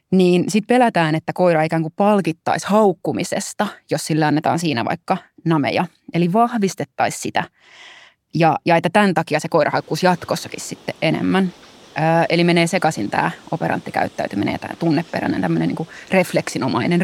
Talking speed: 140 wpm